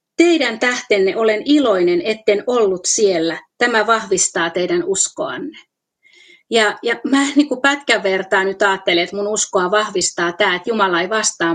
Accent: native